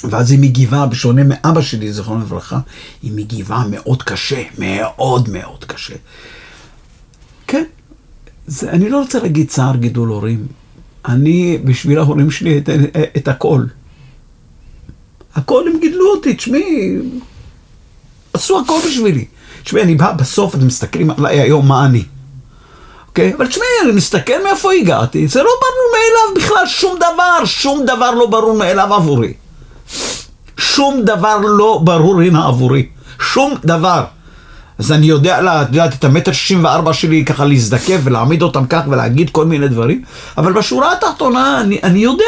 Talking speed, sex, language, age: 145 wpm, male, Hebrew, 50-69